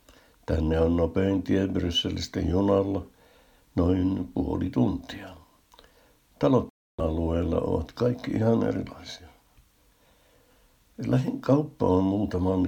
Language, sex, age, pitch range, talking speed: Finnish, male, 60-79, 90-100 Hz, 90 wpm